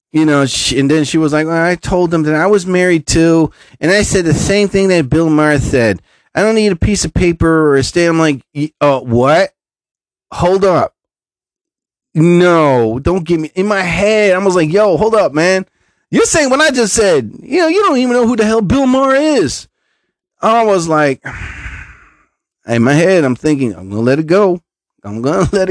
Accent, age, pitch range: American, 30-49, 145-200 Hz